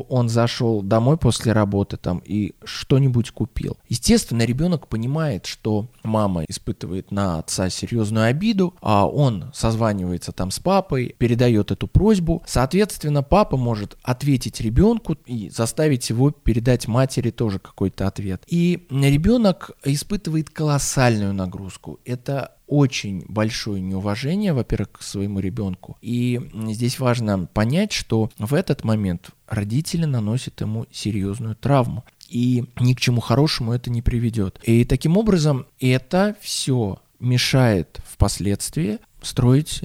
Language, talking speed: Russian, 125 wpm